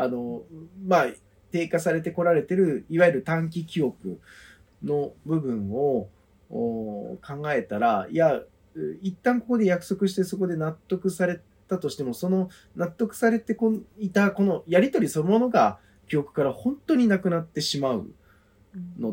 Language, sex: Japanese, male